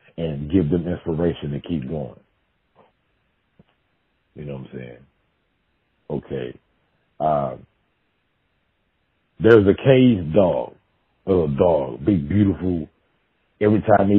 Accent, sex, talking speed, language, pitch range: American, male, 105 wpm, English, 80-110 Hz